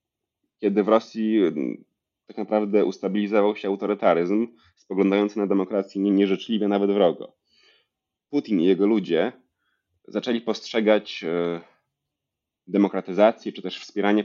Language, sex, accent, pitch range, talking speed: Polish, male, native, 85-105 Hz, 100 wpm